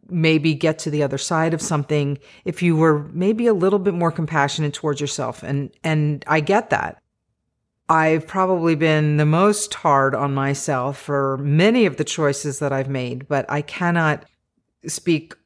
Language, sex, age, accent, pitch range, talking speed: English, female, 40-59, American, 145-170 Hz, 170 wpm